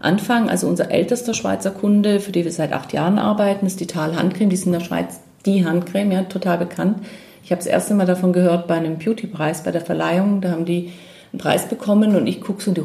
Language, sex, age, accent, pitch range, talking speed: German, female, 40-59, German, 170-210 Hz, 250 wpm